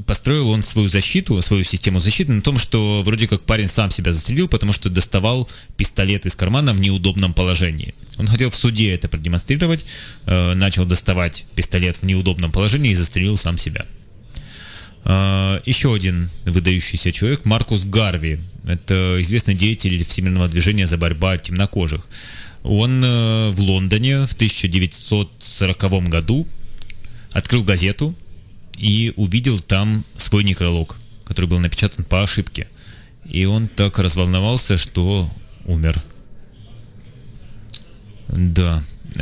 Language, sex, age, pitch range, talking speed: Ukrainian, male, 20-39, 90-115 Hz, 120 wpm